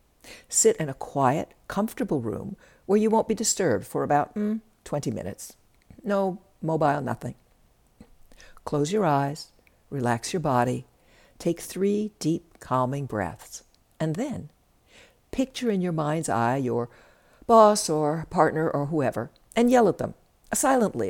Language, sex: English, female